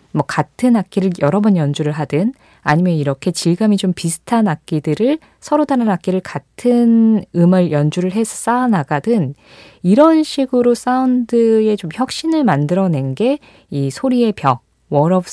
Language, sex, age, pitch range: Korean, female, 20-39, 160-235 Hz